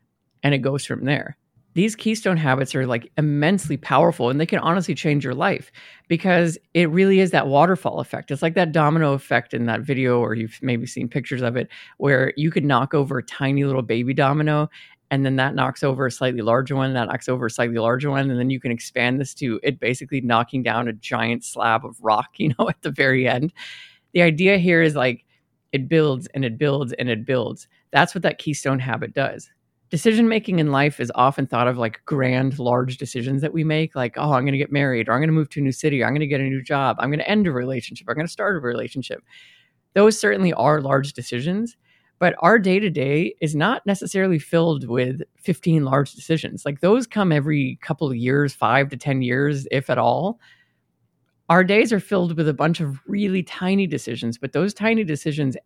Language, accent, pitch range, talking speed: English, American, 130-170 Hz, 220 wpm